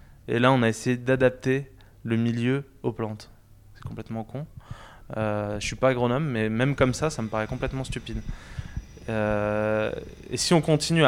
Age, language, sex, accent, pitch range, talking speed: 20-39, French, male, French, 105-125 Hz, 180 wpm